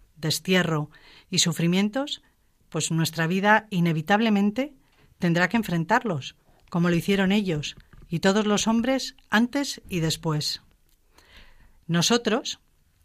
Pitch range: 170-210 Hz